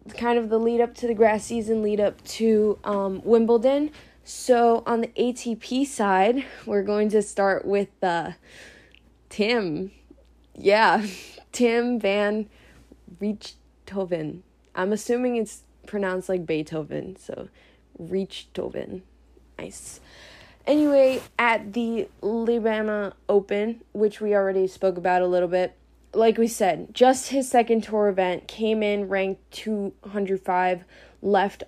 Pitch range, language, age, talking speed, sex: 195-230 Hz, English, 20-39, 120 wpm, female